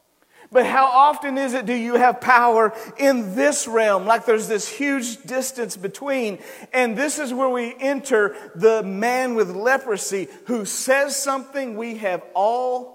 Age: 50-69